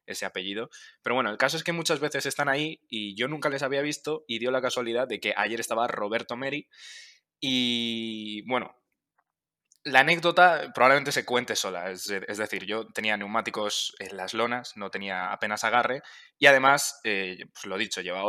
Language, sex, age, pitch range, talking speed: Spanish, male, 20-39, 110-140 Hz, 185 wpm